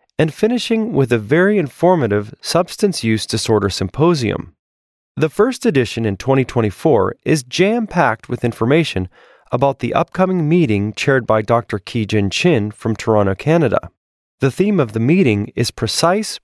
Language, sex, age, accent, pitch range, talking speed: English, male, 30-49, American, 110-170 Hz, 140 wpm